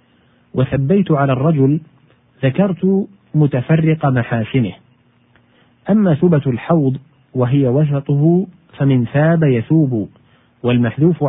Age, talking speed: 40-59, 80 wpm